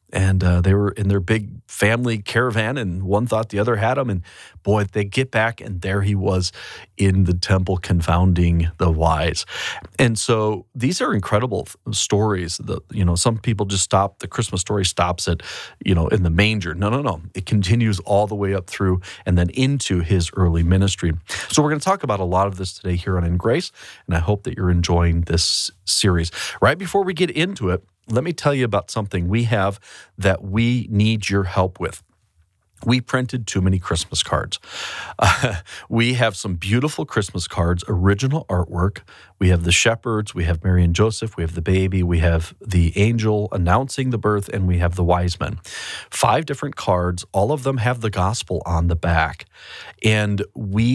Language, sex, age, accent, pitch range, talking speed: English, male, 40-59, American, 90-110 Hz, 200 wpm